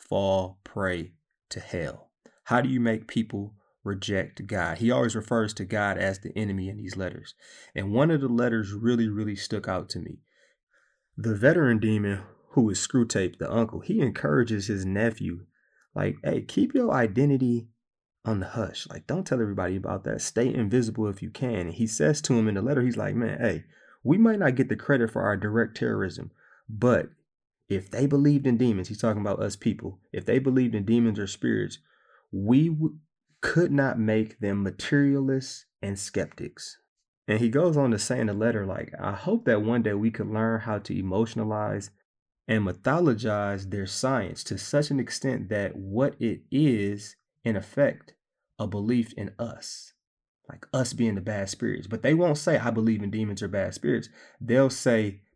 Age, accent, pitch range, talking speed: 30-49, American, 100-125 Hz, 185 wpm